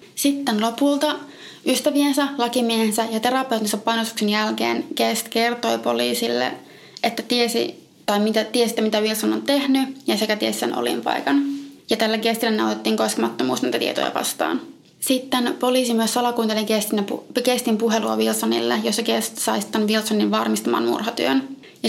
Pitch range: 210-250 Hz